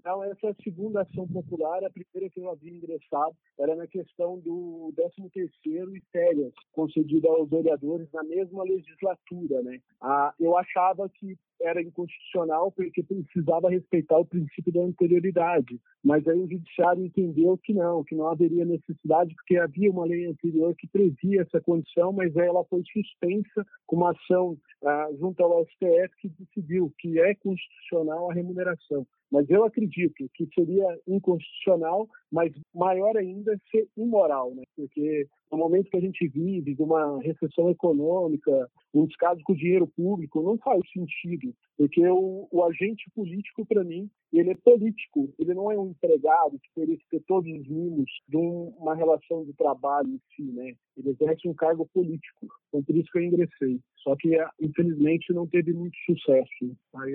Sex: male